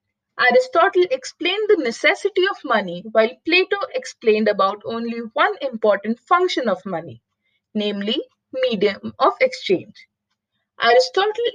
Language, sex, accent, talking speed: English, female, Indian, 110 wpm